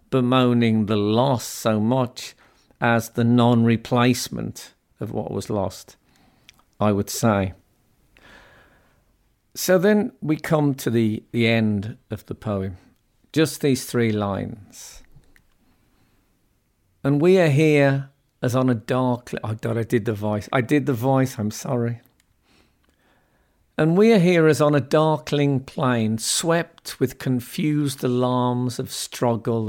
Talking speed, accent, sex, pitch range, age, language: 130 wpm, British, male, 110-140 Hz, 50-69, English